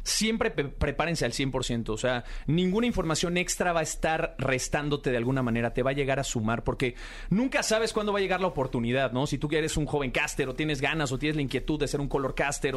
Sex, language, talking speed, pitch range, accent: male, Spanish, 240 wpm, 130-175 Hz, Mexican